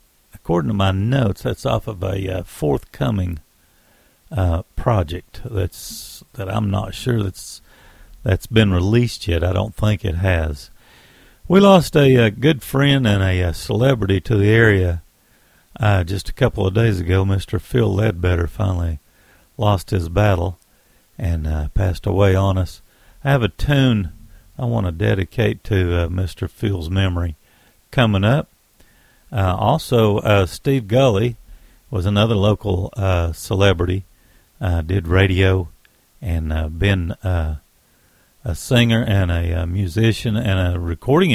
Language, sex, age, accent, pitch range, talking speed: English, male, 50-69, American, 90-115 Hz, 145 wpm